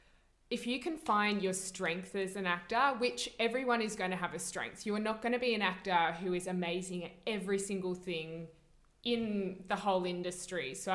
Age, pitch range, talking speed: 20-39, 175-215 Hz, 205 wpm